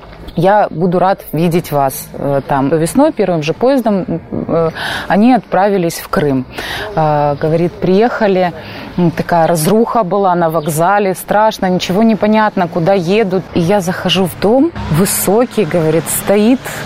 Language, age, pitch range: Russian, 20-39, 175-220 Hz